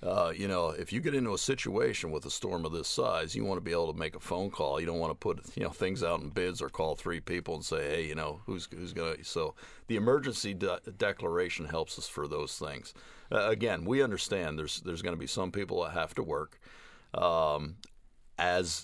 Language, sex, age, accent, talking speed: English, male, 50-69, American, 240 wpm